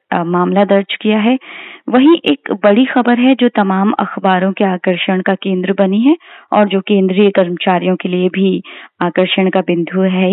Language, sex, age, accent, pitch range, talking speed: Hindi, female, 20-39, native, 185-230 Hz, 170 wpm